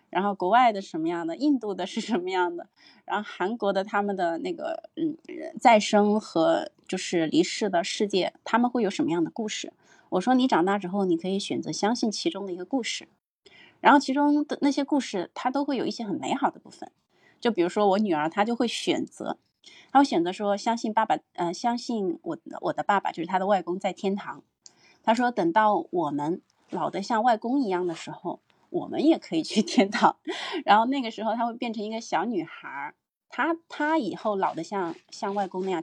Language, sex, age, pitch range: Chinese, female, 30-49, 185-280 Hz